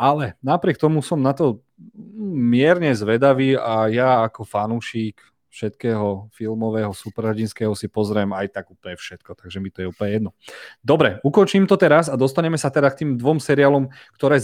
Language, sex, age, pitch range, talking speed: Slovak, male, 30-49, 105-135 Hz, 165 wpm